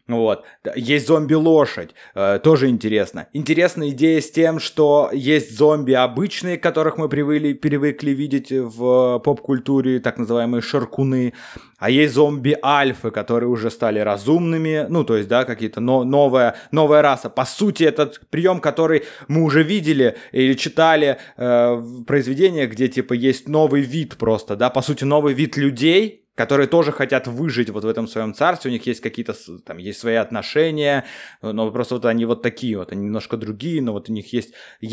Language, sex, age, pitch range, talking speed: Russian, male, 20-39, 115-150 Hz, 165 wpm